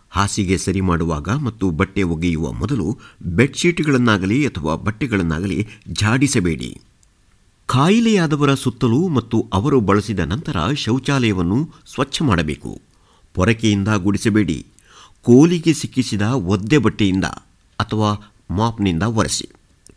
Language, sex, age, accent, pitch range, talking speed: Kannada, male, 50-69, native, 95-125 Hz, 85 wpm